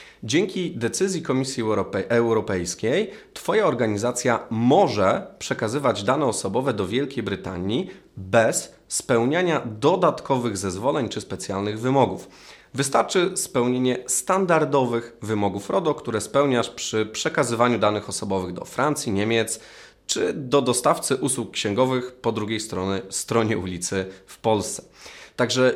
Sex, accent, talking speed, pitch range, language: male, native, 105 wpm, 100-125 Hz, Polish